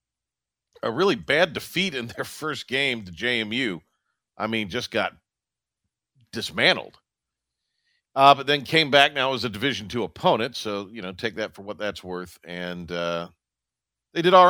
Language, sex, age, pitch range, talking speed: English, male, 50-69, 110-145 Hz, 165 wpm